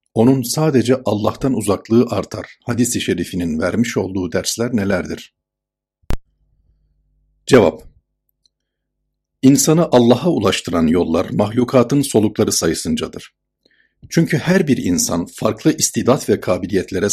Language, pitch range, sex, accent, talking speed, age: Turkish, 95-130 Hz, male, native, 95 wpm, 60-79